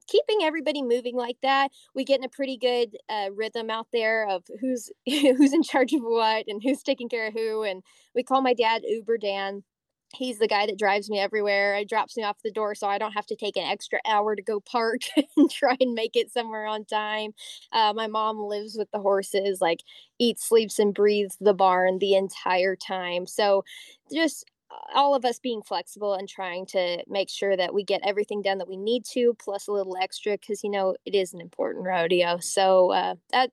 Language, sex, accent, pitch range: English, female, American, 195-230 Hz